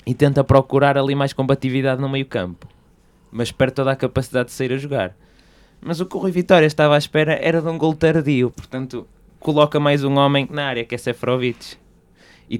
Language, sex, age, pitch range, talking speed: Portuguese, male, 20-39, 115-135 Hz, 205 wpm